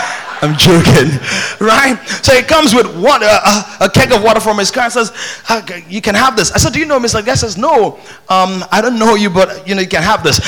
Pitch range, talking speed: 175-255 Hz, 250 wpm